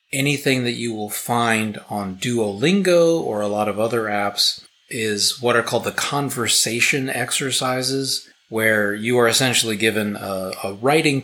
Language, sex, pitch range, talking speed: English, male, 105-130 Hz, 150 wpm